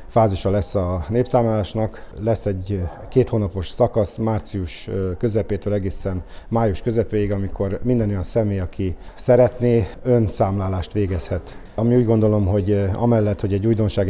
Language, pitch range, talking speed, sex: Hungarian, 95-115 Hz, 130 wpm, male